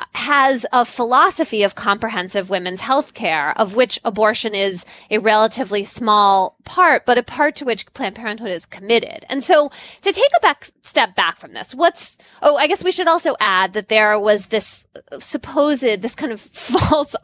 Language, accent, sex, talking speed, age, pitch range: English, American, female, 180 wpm, 20-39, 200-275 Hz